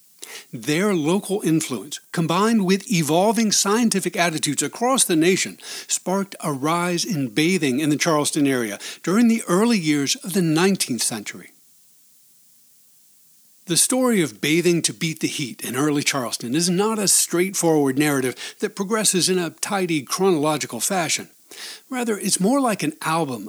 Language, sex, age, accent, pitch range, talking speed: English, male, 60-79, American, 165-225 Hz, 145 wpm